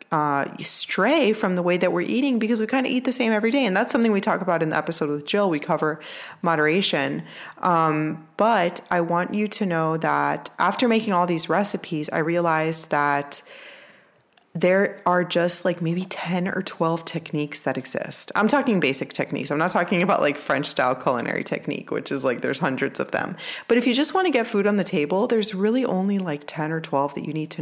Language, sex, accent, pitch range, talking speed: English, female, American, 155-195 Hz, 215 wpm